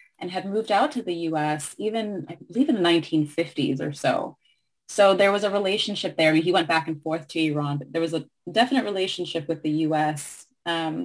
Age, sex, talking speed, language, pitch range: 20-39, female, 215 wpm, English, 160-215 Hz